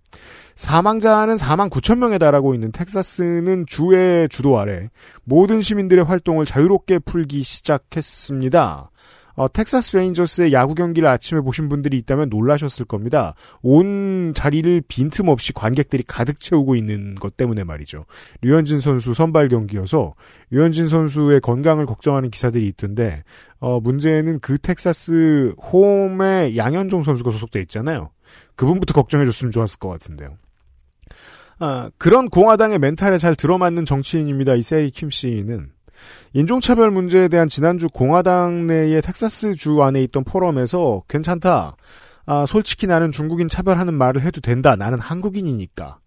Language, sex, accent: Korean, male, native